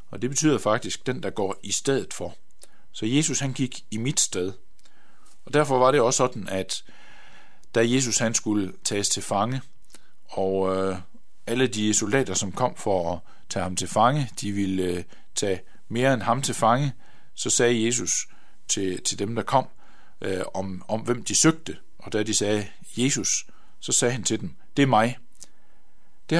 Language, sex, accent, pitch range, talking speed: Danish, male, native, 100-130 Hz, 175 wpm